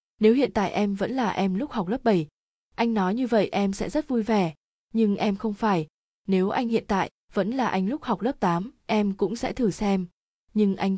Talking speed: 230 wpm